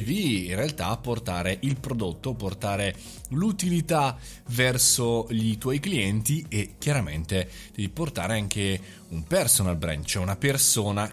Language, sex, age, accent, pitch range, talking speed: Italian, male, 30-49, native, 95-135 Hz, 125 wpm